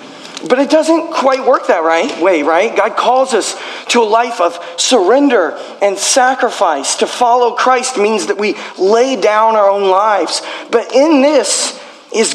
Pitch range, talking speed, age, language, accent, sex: 205-245 Hz, 160 wpm, 40-59, English, American, male